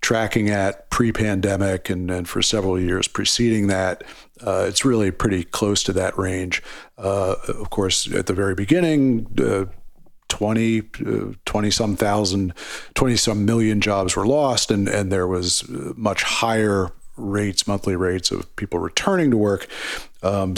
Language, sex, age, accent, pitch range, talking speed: English, male, 50-69, American, 95-115 Hz, 150 wpm